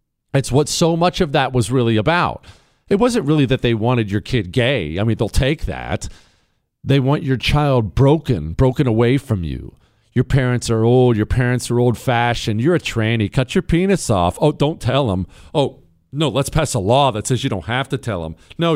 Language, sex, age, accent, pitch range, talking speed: English, male, 40-59, American, 105-130 Hz, 215 wpm